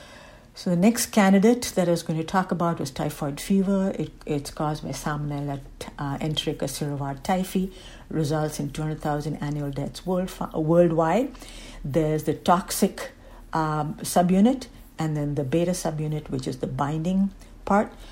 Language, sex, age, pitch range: English, female, 60-79, 145-175 Hz